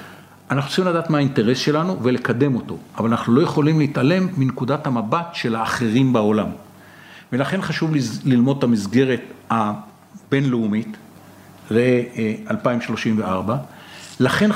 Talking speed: 105 wpm